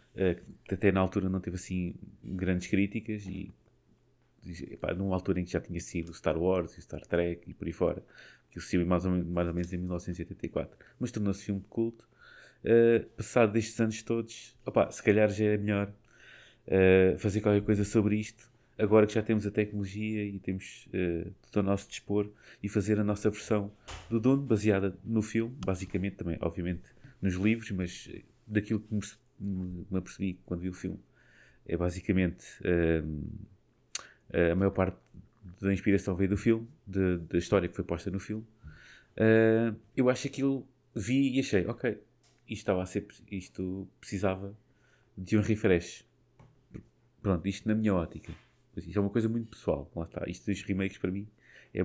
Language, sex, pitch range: Portuguese, male, 95-110 Hz